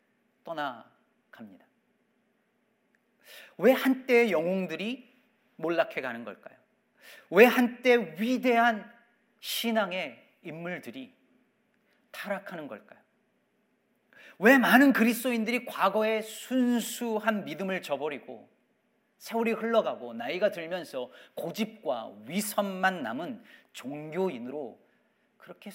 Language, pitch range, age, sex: Korean, 185-235 Hz, 40-59, male